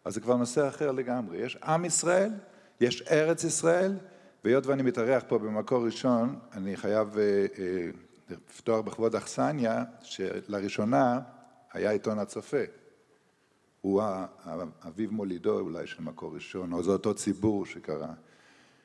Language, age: Hebrew, 50-69